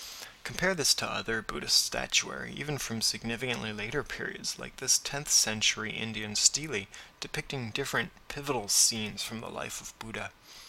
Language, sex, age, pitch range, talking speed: English, male, 20-39, 110-130 Hz, 145 wpm